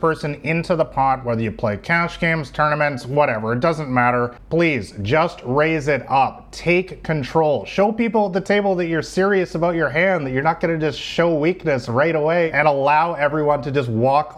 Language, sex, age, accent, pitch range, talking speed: English, male, 30-49, American, 130-170 Hz, 200 wpm